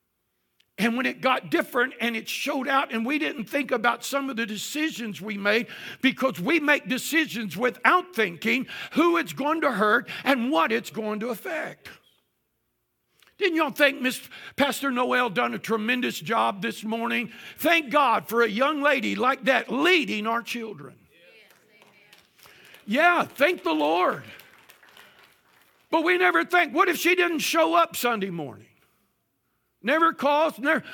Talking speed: 155 wpm